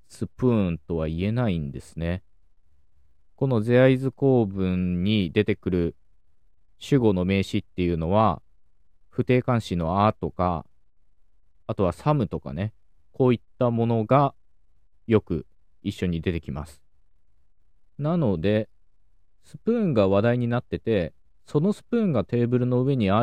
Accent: native